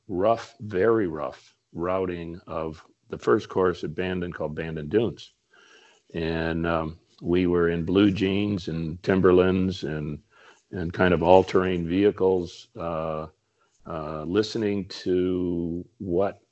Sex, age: male, 50-69